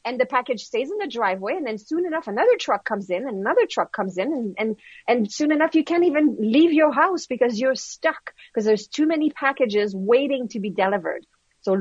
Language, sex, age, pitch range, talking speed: English, female, 30-49, 220-320 Hz, 225 wpm